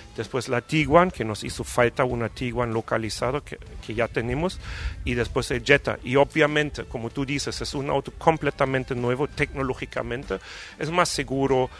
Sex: male